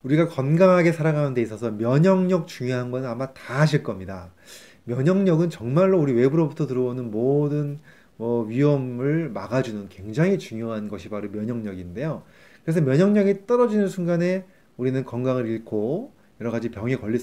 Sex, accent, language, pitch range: male, native, Korean, 115-175 Hz